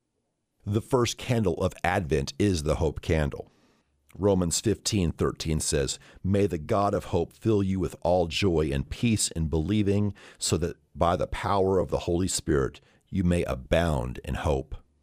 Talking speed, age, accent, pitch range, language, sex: 165 wpm, 50-69, American, 80-110 Hz, English, male